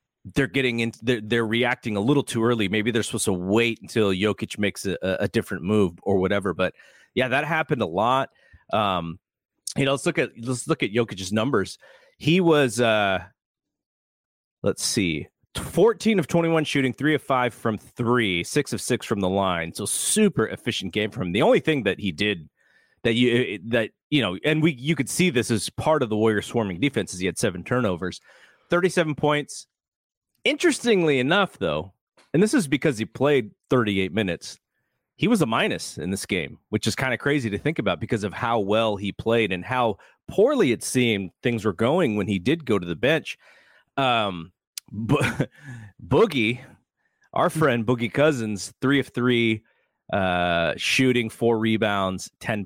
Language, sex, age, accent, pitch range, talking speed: English, male, 30-49, American, 100-140 Hz, 180 wpm